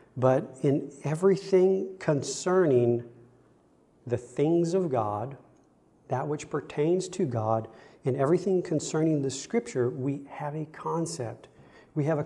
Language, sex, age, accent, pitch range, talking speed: English, male, 50-69, American, 120-150 Hz, 120 wpm